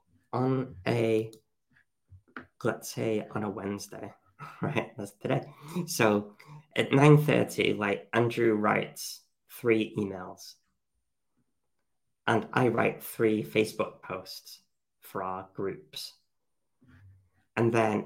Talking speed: 95 wpm